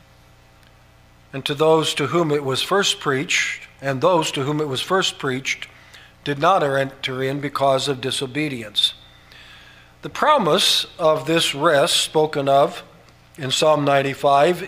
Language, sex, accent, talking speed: English, male, American, 140 wpm